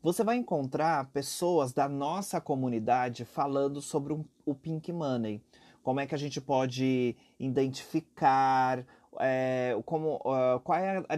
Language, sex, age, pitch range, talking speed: Portuguese, male, 30-49, 130-195 Hz, 120 wpm